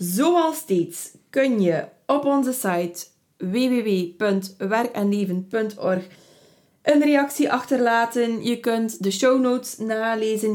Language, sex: Dutch, female